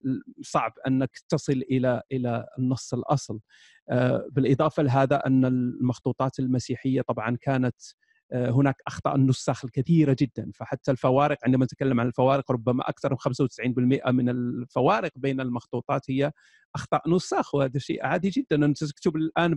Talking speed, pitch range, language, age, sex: 130 wpm, 135-170 Hz, Arabic, 40-59, male